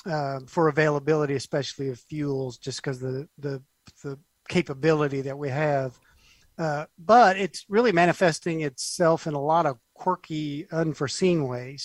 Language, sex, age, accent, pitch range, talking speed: English, male, 50-69, American, 140-165 Hz, 140 wpm